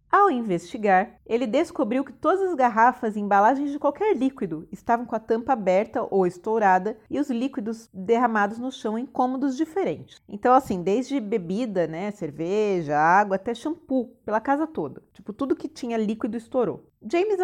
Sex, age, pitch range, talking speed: female, 30-49, 190-260 Hz, 165 wpm